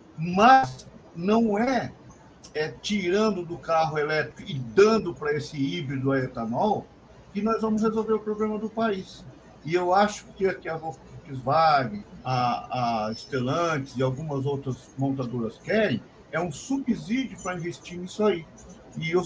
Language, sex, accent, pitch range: Portuguese, male, Brazilian, 135-205 Hz